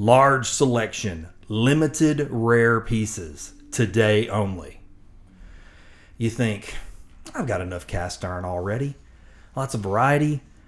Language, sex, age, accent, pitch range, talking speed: English, male, 30-49, American, 100-130 Hz, 100 wpm